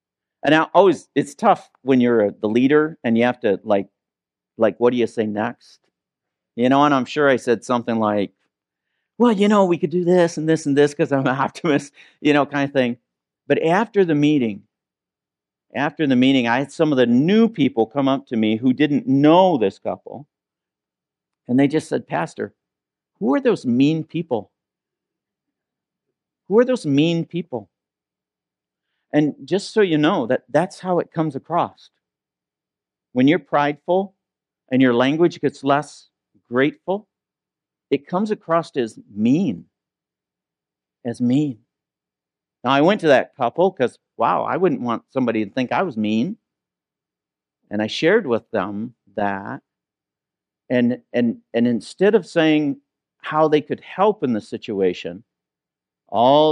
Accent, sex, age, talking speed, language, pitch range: American, male, 50-69, 160 wpm, English, 110-155 Hz